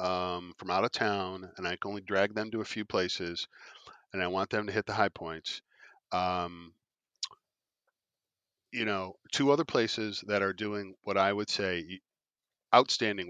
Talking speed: 170 wpm